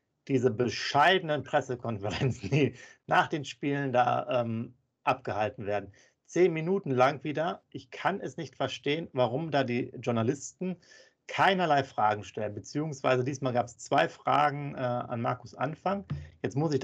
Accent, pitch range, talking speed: German, 120-140 Hz, 145 wpm